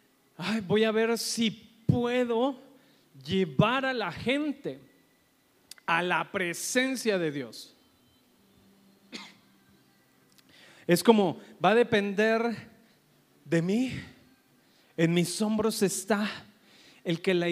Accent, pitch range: Mexican, 165-230 Hz